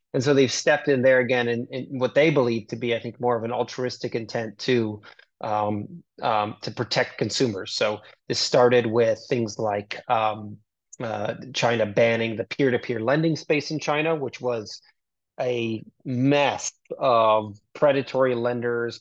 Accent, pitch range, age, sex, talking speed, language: American, 115-130 Hz, 30-49, male, 160 wpm, English